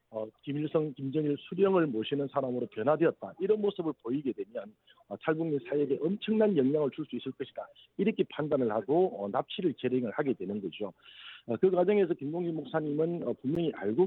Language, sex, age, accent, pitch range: Korean, male, 50-69, native, 130-170 Hz